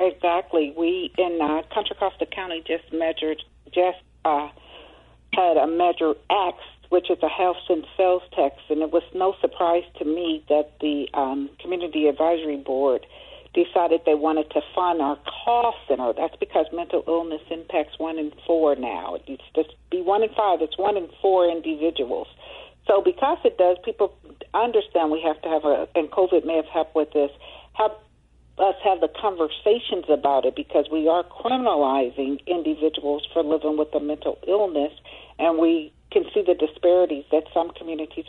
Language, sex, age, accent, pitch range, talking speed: English, female, 50-69, American, 155-185 Hz, 170 wpm